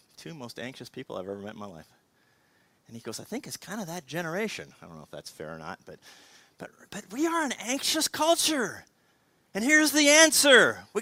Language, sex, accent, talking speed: English, male, American, 225 wpm